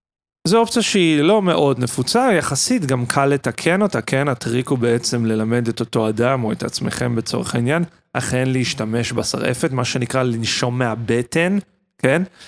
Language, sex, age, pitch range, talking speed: Hebrew, male, 30-49, 120-155 Hz, 155 wpm